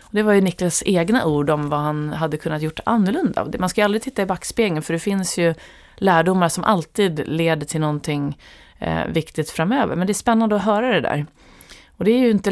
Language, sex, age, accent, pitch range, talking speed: Swedish, female, 30-49, native, 150-185 Hz, 215 wpm